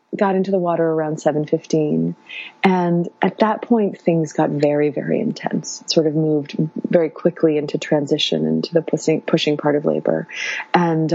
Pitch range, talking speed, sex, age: 150-180 Hz, 165 wpm, female, 30-49